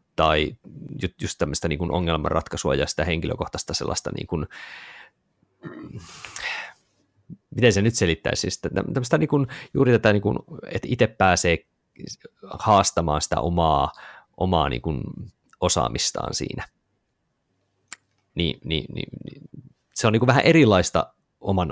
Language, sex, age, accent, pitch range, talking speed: Finnish, male, 30-49, native, 80-95 Hz, 85 wpm